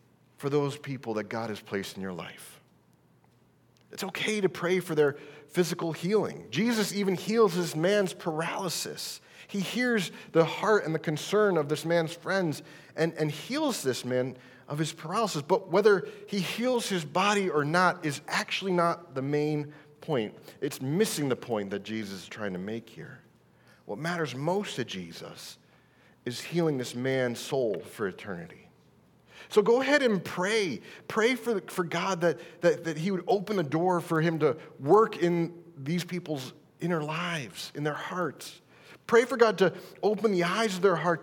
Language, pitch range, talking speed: English, 145-195 Hz, 175 wpm